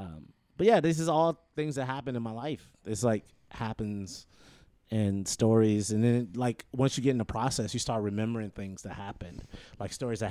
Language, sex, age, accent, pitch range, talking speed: English, male, 30-49, American, 100-135 Hz, 210 wpm